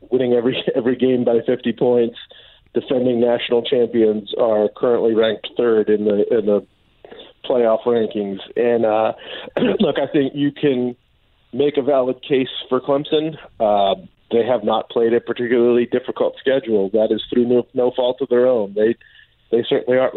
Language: English